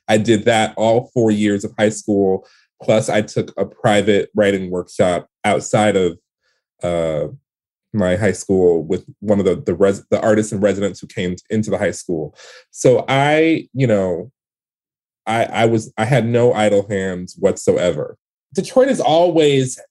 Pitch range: 105-125 Hz